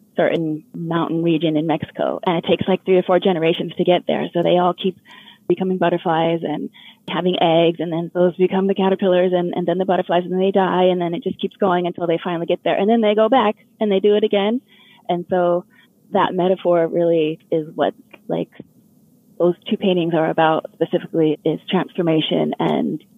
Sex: female